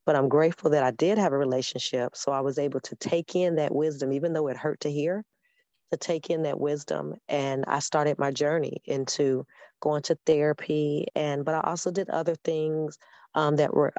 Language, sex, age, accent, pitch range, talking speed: English, female, 40-59, American, 140-155 Hz, 205 wpm